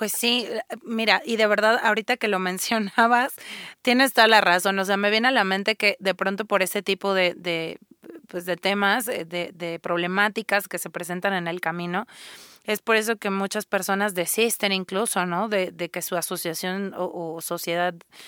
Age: 30-49